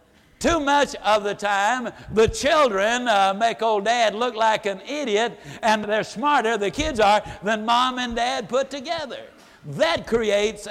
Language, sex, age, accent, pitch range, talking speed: English, male, 60-79, American, 190-245 Hz, 165 wpm